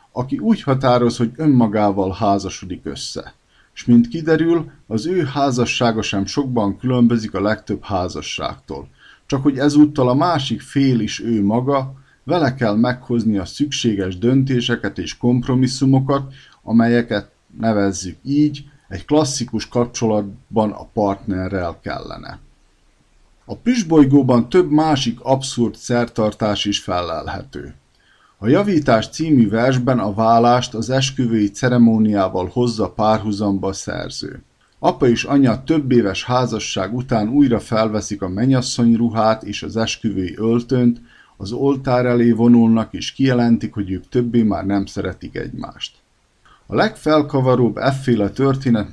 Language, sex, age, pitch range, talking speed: Hungarian, male, 50-69, 105-135 Hz, 120 wpm